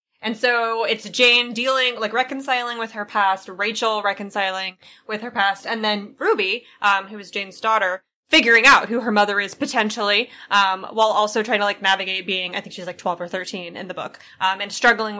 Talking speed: 200 wpm